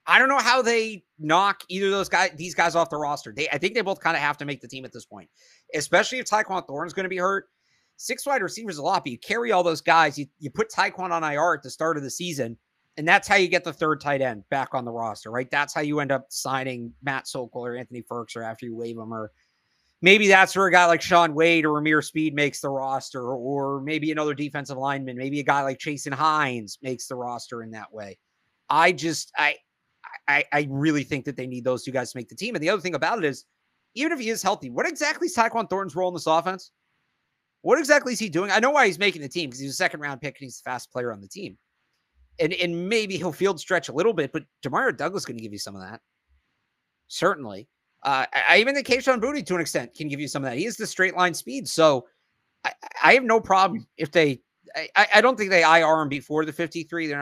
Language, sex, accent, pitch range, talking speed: English, male, American, 135-185 Hz, 260 wpm